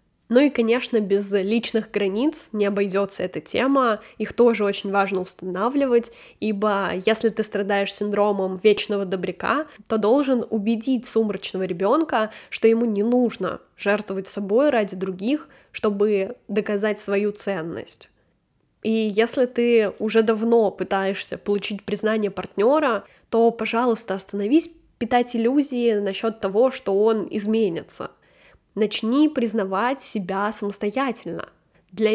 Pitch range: 200-235 Hz